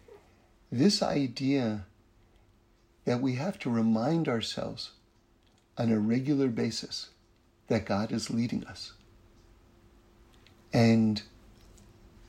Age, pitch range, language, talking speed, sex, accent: 50-69, 110-160 Hz, English, 90 wpm, male, American